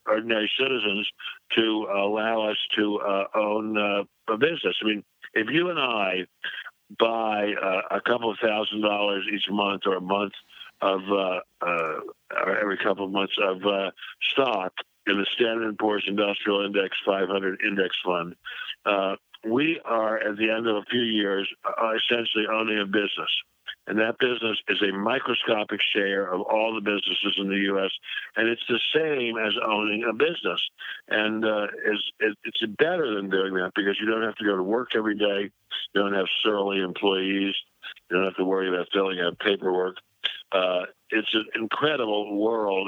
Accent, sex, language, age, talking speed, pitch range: American, male, English, 50-69, 170 wpm, 100-110 Hz